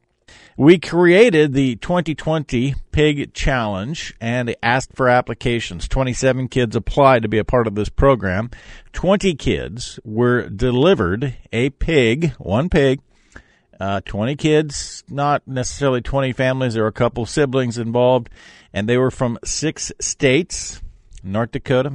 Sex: male